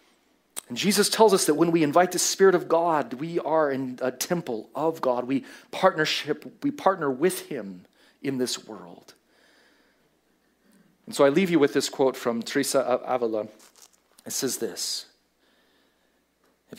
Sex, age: male, 40-59